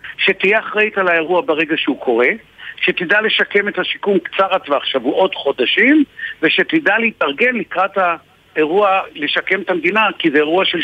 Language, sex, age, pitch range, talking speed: Hebrew, male, 60-79, 155-230 Hz, 145 wpm